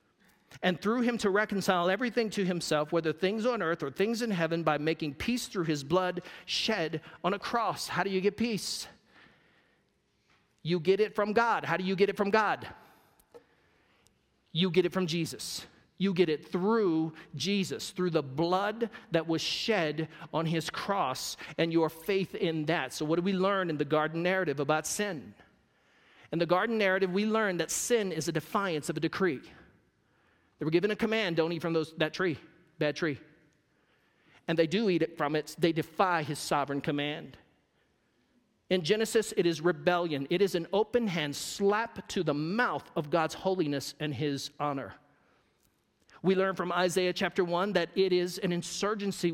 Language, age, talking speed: English, 40-59, 180 wpm